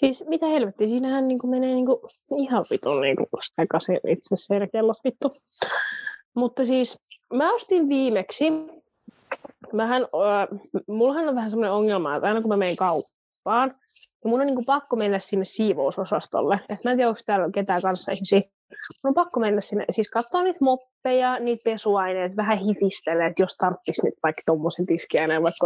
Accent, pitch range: native, 205-270 Hz